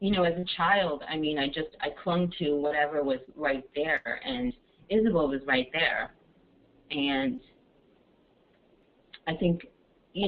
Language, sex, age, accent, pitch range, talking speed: English, female, 30-49, American, 135-175 Hz, 145 wpm